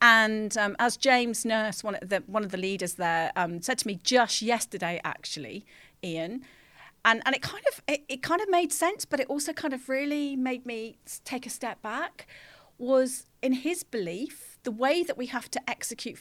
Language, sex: English, female